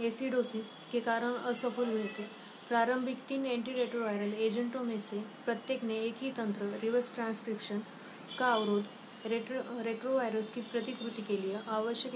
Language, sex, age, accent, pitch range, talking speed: Hindi, female, 20-39, native, 220-245 Hz, 130 wpm